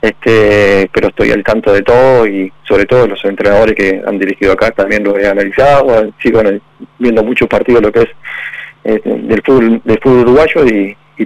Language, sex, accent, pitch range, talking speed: Spanish, male, Argentinian, 105-140 Hz, 185 wpm